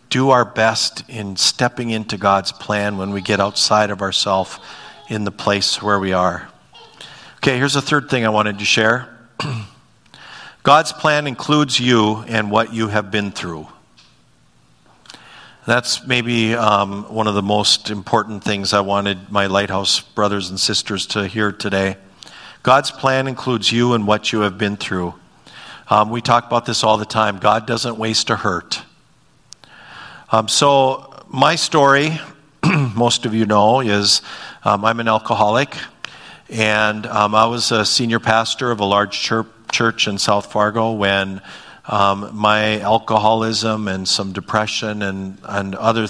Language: English